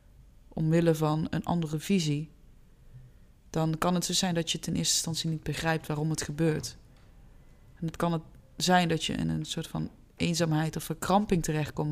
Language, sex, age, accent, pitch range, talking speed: Dutch, female, 20-39, Dutch, 155-195 Hz, 185 wpm